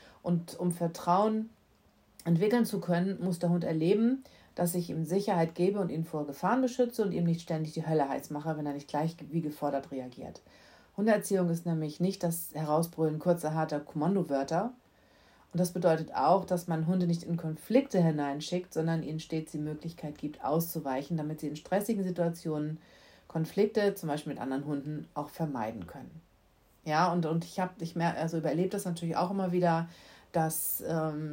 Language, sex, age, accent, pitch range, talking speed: German, female, 40-59, German, 155-185 Hz, 175 wpm